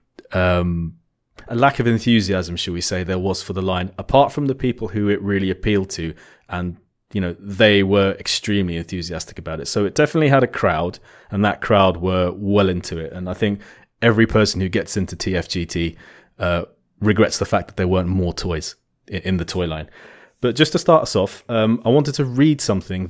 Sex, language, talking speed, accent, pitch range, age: male, English, 205 wpm, British, 95-115 Hz, 30-49